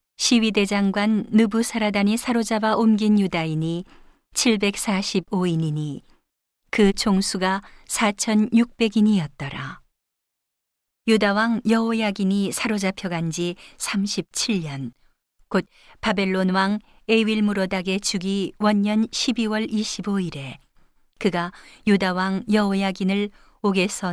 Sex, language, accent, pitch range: female, Korean, native, 180-215 Hz